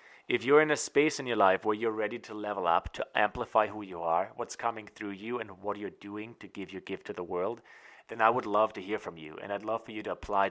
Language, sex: English, male